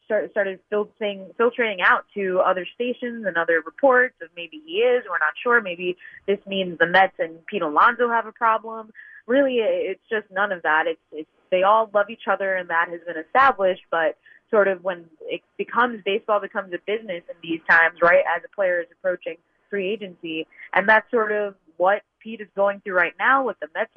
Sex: female